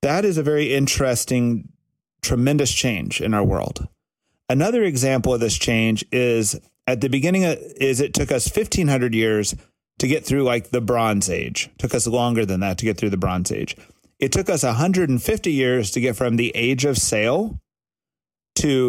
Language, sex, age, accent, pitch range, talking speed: English, male, 30-49, American, 110-135 Hz, 180 wpm